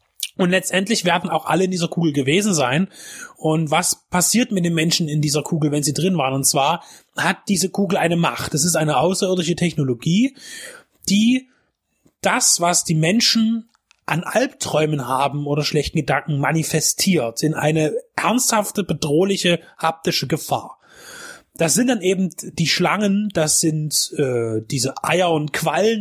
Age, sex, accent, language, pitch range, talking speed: 30-49, male, German, German, 155-195 Hz, 150 wpm